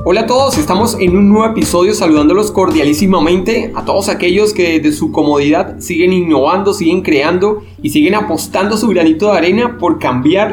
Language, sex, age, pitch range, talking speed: Spanish, male, 30-49, 150-210 Hz, 175 wpm